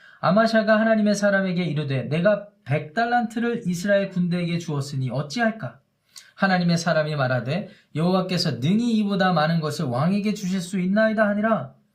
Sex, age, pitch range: male, 20-39, 150-200 Hz